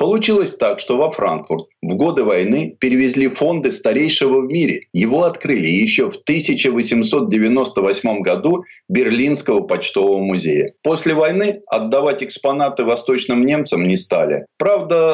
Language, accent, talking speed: Russian, native, 125 wpm